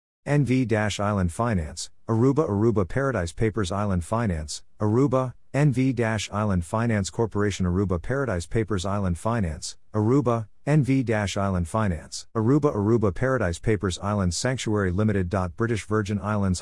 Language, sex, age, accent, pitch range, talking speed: English, male, 50-69, American, 95-115 Hz, 110 wpm